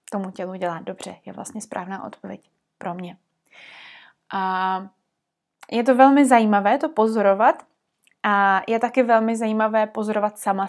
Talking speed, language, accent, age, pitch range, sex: 130 wpm, Czech, native, 20-39, 195-230 Hz, female